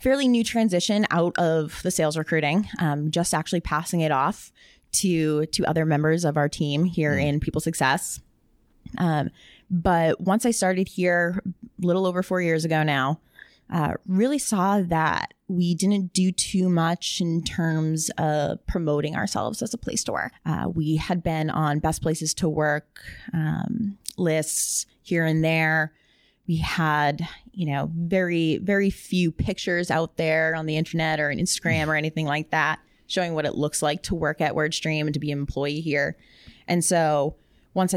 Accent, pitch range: American, 155-185 Hz